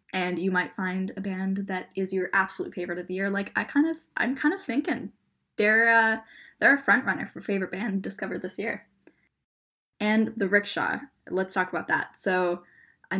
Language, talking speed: English, 195 wpm